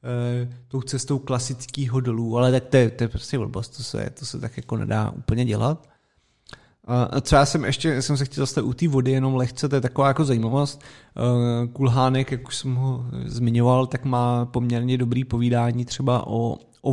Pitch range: 120-130 Hz